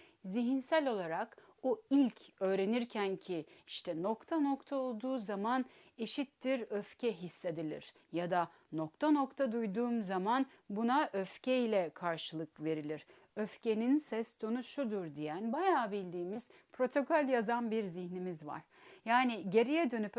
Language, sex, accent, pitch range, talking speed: Turkish, female, native, 180-255 Hz, 120 wpm